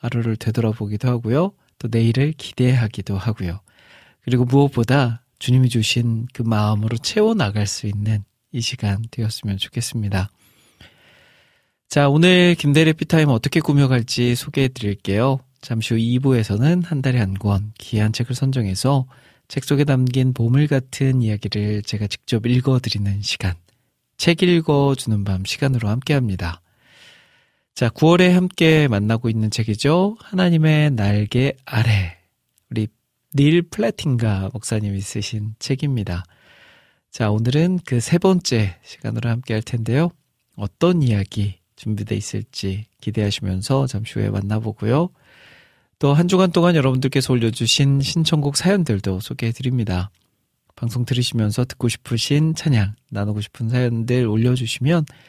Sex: male